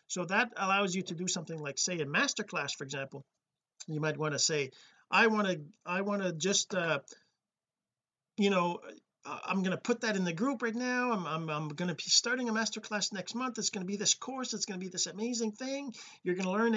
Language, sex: English, male